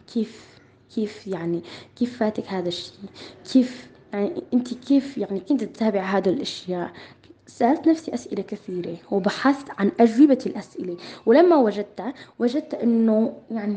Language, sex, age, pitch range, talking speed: Arabic, female, 20-39, 195-260 Hz, 120 wpm